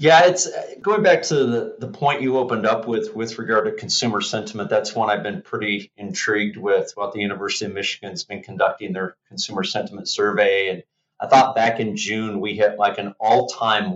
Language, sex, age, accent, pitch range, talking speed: English, male, 30-49, American, 110-130 Hz, 200 wpm